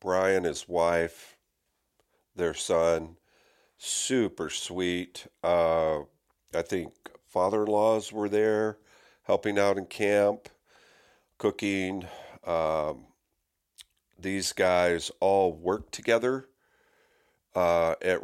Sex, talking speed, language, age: male, 85 wpm, English, 50-69